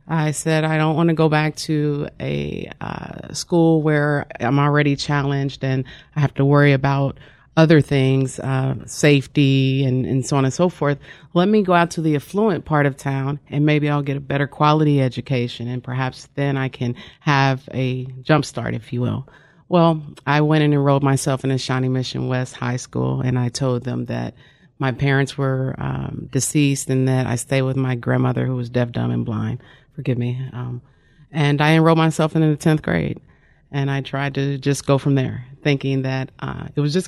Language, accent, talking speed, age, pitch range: English, American, 200 wpm, 40-59, 130-155 Hz